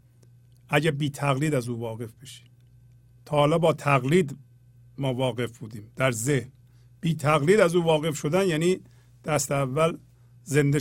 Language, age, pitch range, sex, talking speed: Persian, 50-69, 120-175 Hz, male, 145 wpm